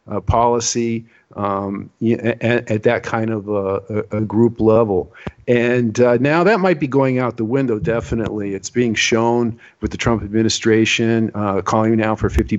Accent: American